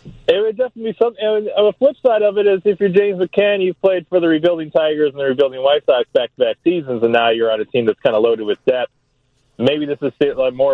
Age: 30-49